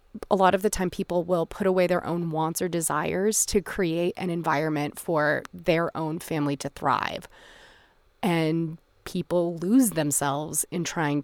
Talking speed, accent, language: 160 wpm, American, English